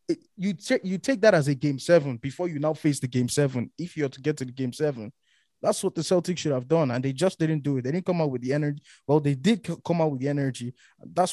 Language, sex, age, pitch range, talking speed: English, male, 20-39, 120-145 Hz, 290 wpm